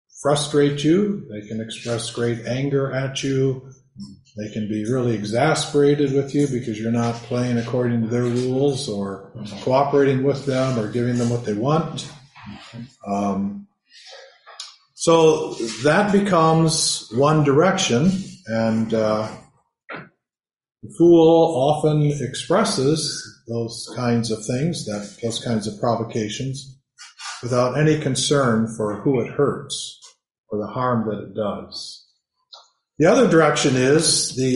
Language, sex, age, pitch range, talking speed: English, male, 40-59, 110-145 Hz, 125 wpm